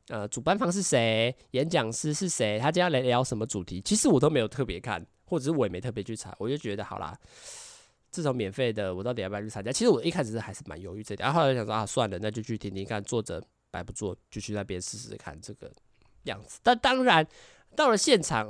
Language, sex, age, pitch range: Chinese, male, 20-39, 105-145 Hz